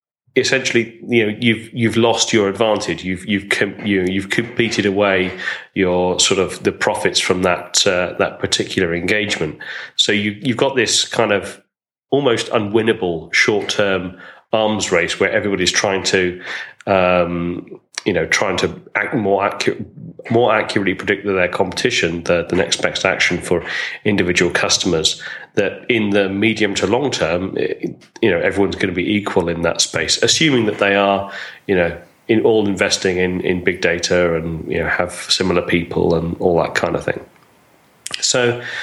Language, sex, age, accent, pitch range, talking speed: English, male, 30-49, British, 90-110 Hz, 165 wpm